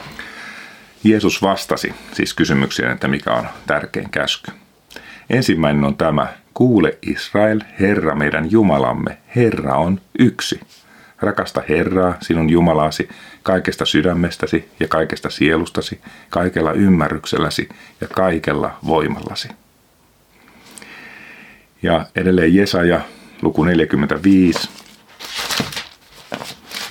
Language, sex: Finnish, male